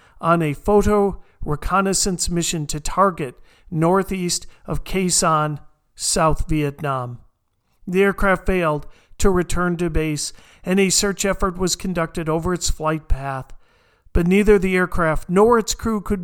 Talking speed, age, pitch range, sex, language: 135 wpm, 50-69, 155-190 Hz, male, English